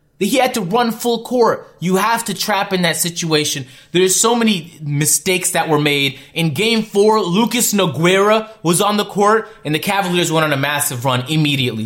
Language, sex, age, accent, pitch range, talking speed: English, male, 30-49, American, 135-205 Hz, 190 wpm